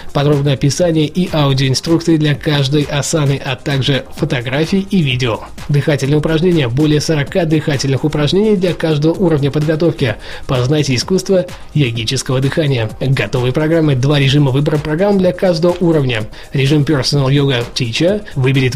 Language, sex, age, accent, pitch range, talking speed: Russian, male, 20-39, native, 135-175 Hz, 130 wpm